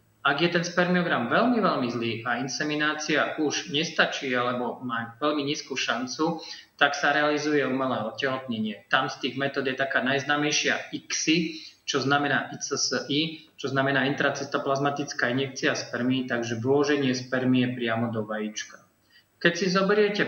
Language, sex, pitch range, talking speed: Slovak, male, 130-160 Hz, 135 wpm